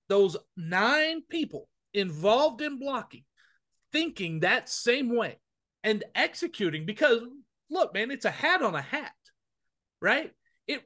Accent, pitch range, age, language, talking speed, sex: American, 180-275 Hz, 40-59, English, 125 wpm, male